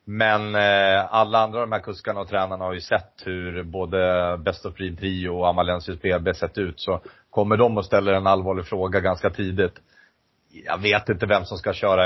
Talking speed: 200 wpm